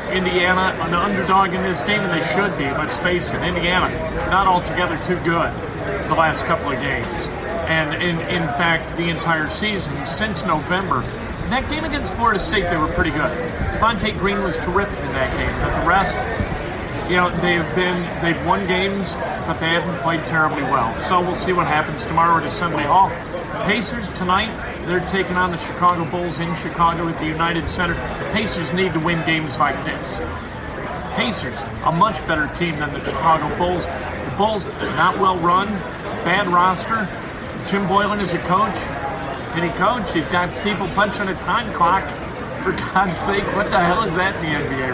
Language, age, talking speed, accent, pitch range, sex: English, 40-59, 185 wpm, American, 155-180 Hz, male